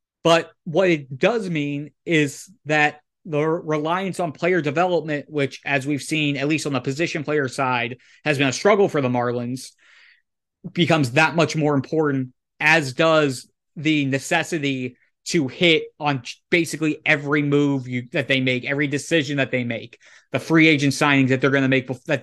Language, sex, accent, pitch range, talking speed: English, male, American, 135-160 Hz, 170 wpm